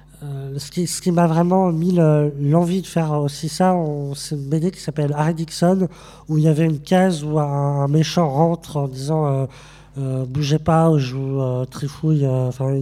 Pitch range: 135-155 Hz